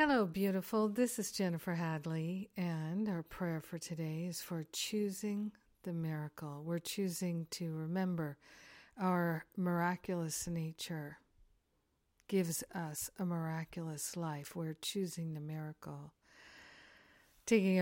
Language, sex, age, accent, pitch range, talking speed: English, female, 50-69, American, 165-190 Hz, 110 wpm